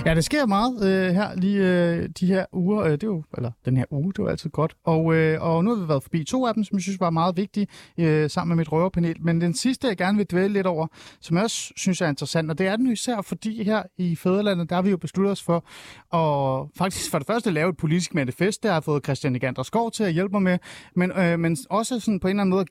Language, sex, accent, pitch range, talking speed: Danish, male, native, 150-200 Hz, 285 wpm